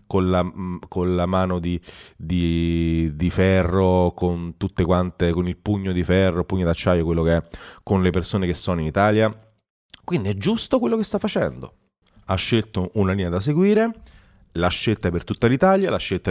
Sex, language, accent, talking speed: male, Italian, native, 185 wpm